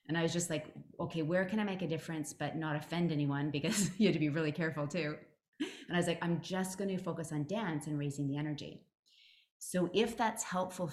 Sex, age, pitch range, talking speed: female, 30-49, 150-185 Hz, 235 wpm